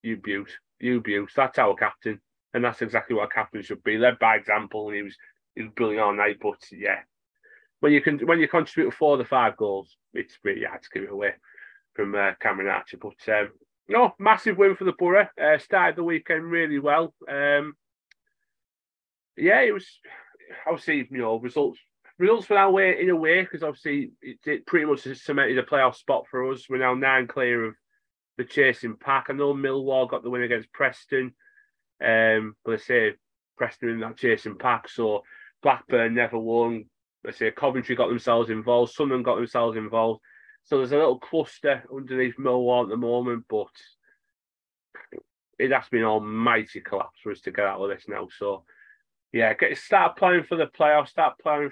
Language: English